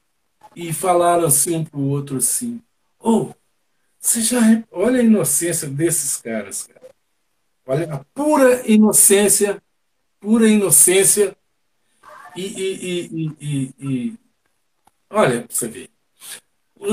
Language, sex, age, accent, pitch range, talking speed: Portuguese, male, 60-79, Brazilian, 155-225 Hz, 120 wpm